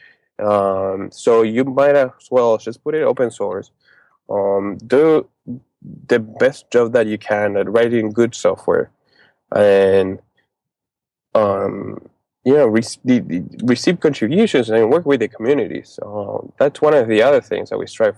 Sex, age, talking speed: male, 20-39, 155 wpm